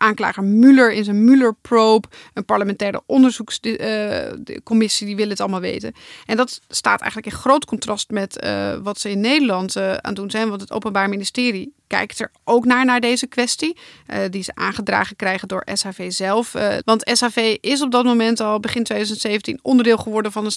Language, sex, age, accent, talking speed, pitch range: Dutch, female, 30-49, Dutch, 190 wpm, 200-235 Hz